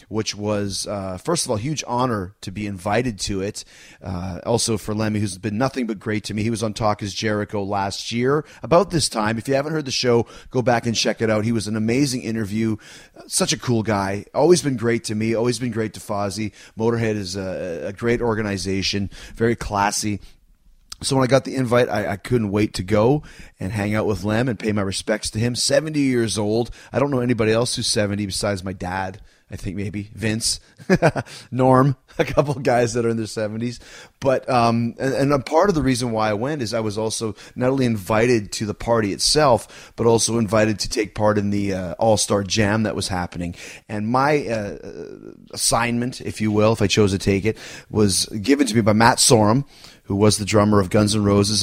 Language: English